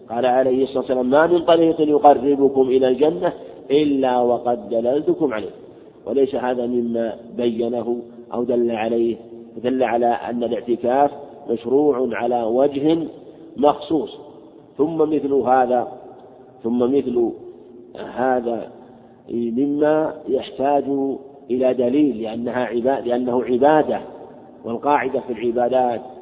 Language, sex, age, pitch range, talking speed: Arabic, male, 50-69, 120-140 Hz, 105 wpm